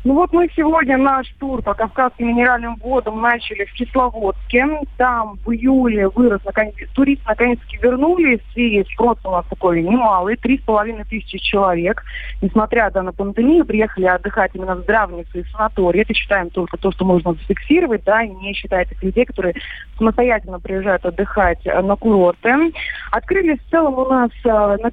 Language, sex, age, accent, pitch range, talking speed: Russian, female, 30-49, native, 195-250 Hz, 160 wpm